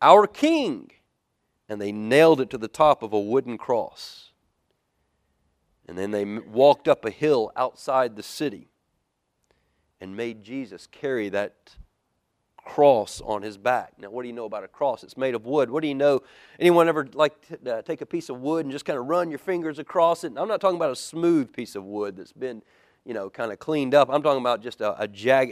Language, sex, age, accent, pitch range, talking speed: English, male, 40-59, American, 100-145 Hz, 210 wpm